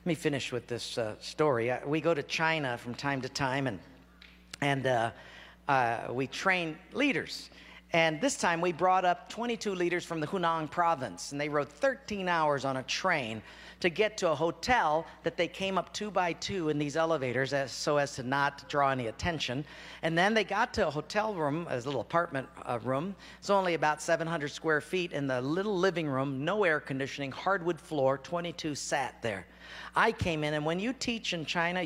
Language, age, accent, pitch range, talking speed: English, 50-69, American, 130-180 Hz, 200 wpm